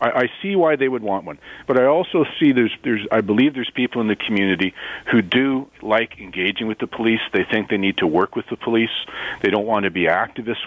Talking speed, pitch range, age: 235 wpm, 100-130 Hz, 40-59